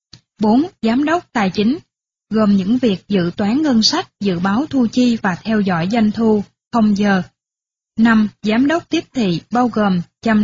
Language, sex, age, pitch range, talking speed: Vietnamese, female, 20-39, 195-245 Hz, 180 wpm